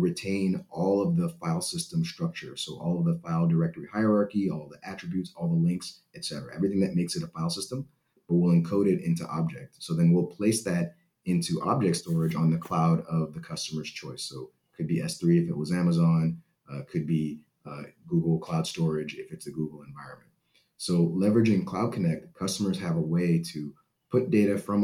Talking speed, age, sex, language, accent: 205 wpm, 30-49, male, English, American